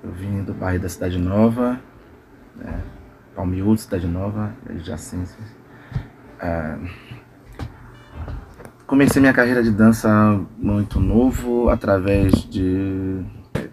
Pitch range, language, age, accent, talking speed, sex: 100-120 Hz, Portuguese, 20-39, Brazilian, 100 wpm, male